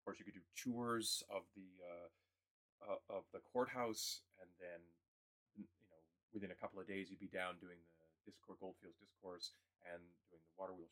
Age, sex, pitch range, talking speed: 30-49, male, 90-110 Hz, 185 wpm